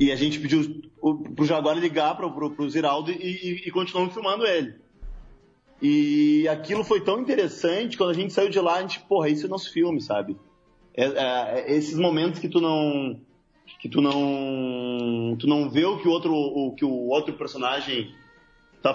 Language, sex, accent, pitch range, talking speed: Portuguese, male, Brazilian, 135-170 Hz, 190 wpm